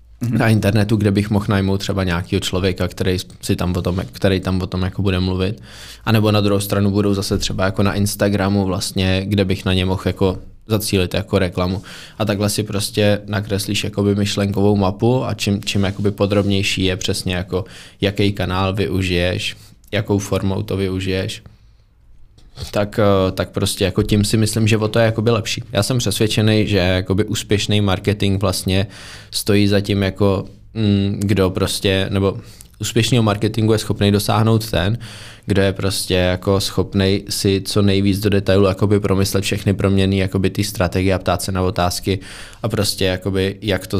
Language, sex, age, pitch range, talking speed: Czech, male, 20-39, 95-105 Hz, 165 wpm